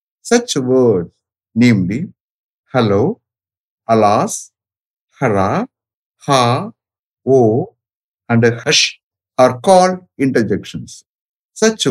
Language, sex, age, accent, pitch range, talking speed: English, male, 60-79, Indian, 105-140 Hz, 75 wpm